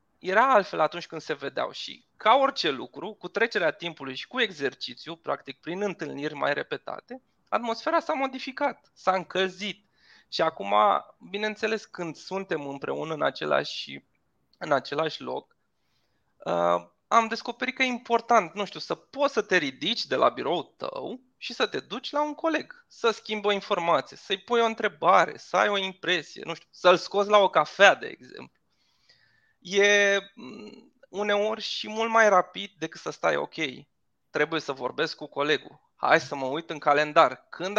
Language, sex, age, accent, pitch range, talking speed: Romanian, male, 20-39, native, 155-220 Hz, 165 wpm